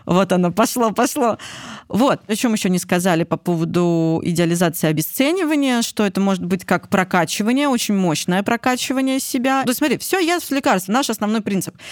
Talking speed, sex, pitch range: 170 wpm, female, 175-245 Hz